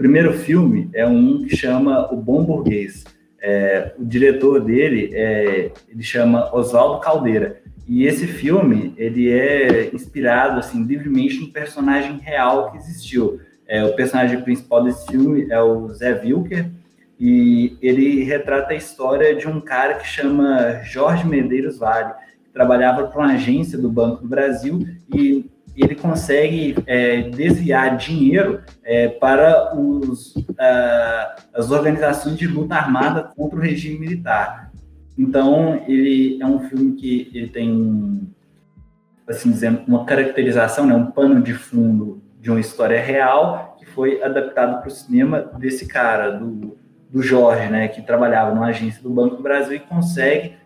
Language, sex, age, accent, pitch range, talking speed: Portuguese, male, 20-39, Brazilian, 120-155 Hz, 145 wpm